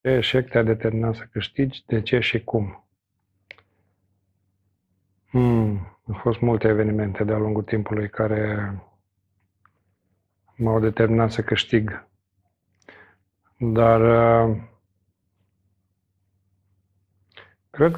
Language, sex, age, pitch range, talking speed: Romanian, male, 40-59, 95-115 Hz, 80 wpm